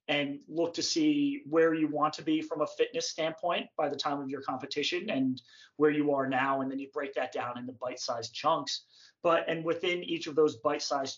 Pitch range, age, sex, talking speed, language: 140-160 Hz, 30-49, male, 215 wpm, English